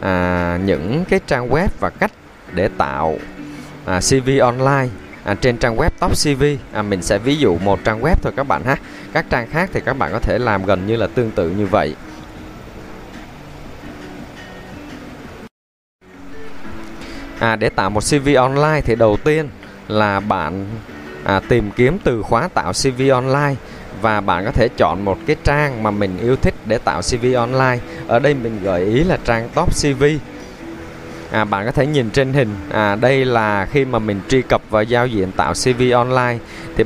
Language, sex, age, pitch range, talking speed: Vietnamese, male, 20-39, 95-135 Hz, 175 wpm